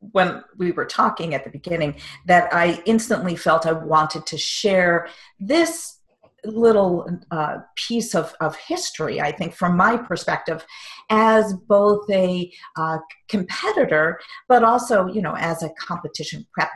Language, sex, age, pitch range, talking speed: English, female, 50-69, 160-215 Hz, 145 wpm